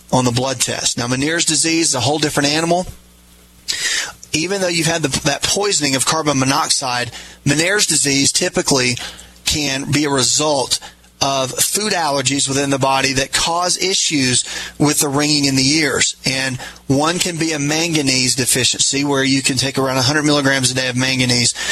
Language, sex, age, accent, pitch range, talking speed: English, male, 30-49, American, 130-155 Hz, 170 wpm